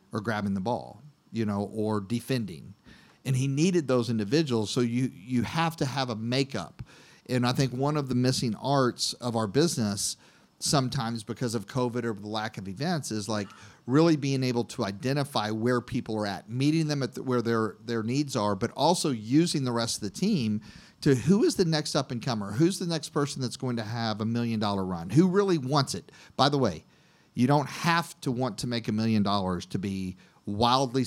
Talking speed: 210 wpm